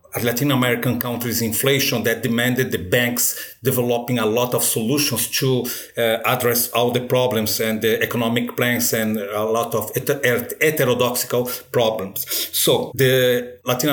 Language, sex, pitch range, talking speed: English, male, 120-140 Hz, 140 wpm